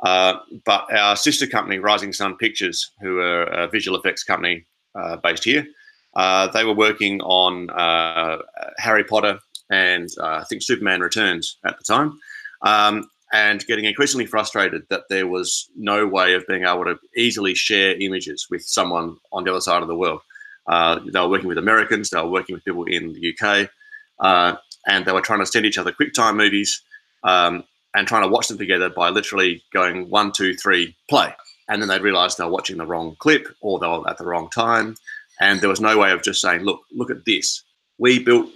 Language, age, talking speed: English, 30-49, 200 wpm